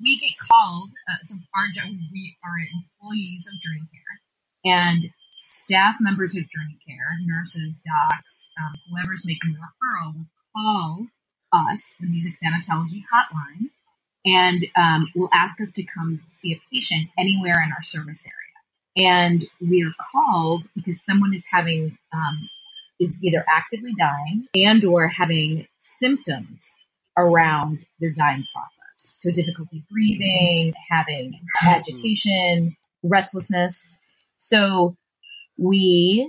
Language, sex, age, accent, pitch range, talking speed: English, female, 30-49, American, 160-195 Hz, 125 wpm